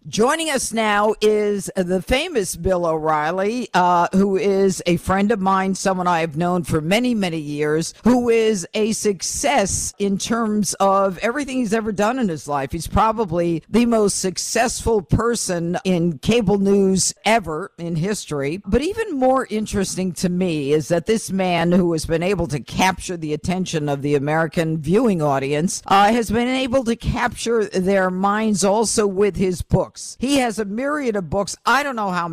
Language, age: English, 50-69